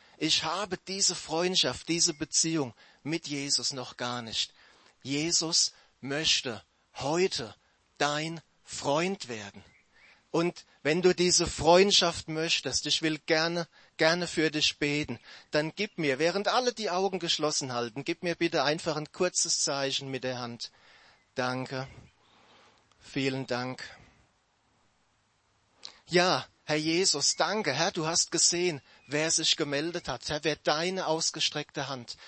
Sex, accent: male, German